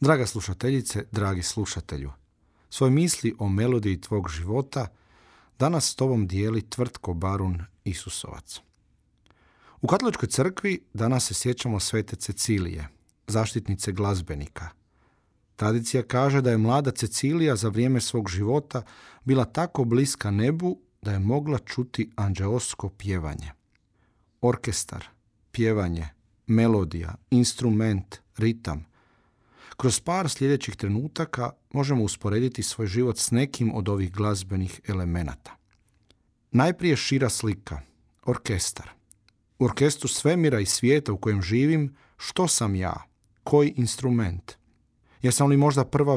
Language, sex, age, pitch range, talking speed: Croatian, male, 40-59, 100-130 Hz, 115 wpm